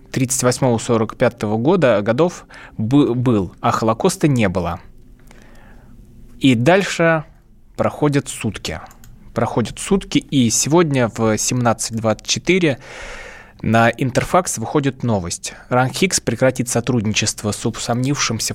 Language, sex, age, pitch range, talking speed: Russian, male, 20-39, 110-145 Hz, 90 wpm